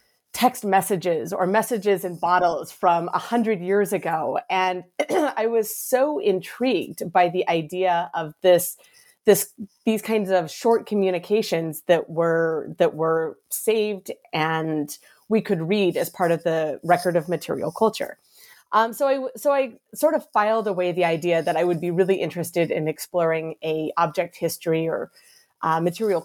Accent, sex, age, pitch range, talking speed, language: American, female, 30-49, 165-210 Hz, 160 wpm, English